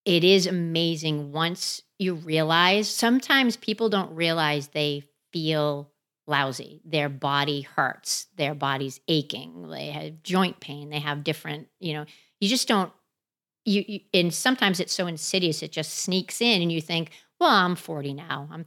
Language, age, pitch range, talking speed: English, 40-59, 150-190 Hz, 160 wpm